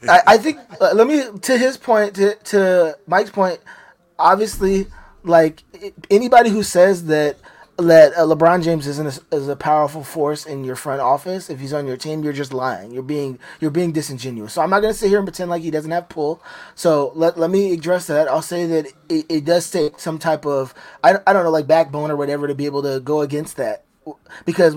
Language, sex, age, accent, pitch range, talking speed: English, male, 20-39, American, 145-175 Hz, 220 wpm